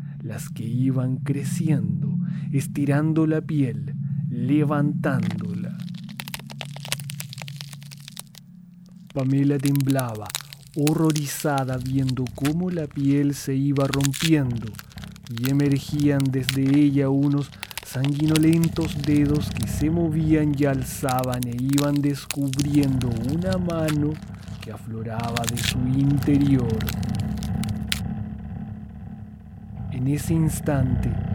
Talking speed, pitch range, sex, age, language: 80 wpm, 130-150 Hz, male, 30-49, Spanish